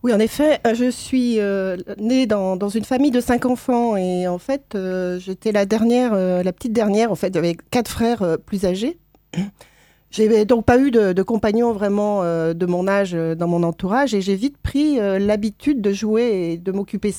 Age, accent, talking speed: 40-59, French, 210 wpm